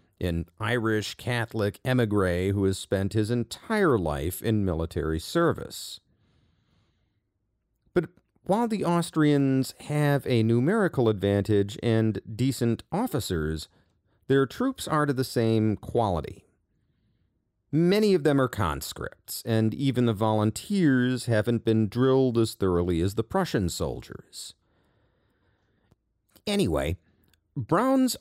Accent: American